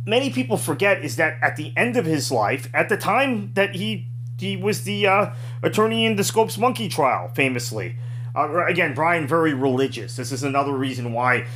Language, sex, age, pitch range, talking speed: English, male, 30-49, 115-130 Hz, 190 wpm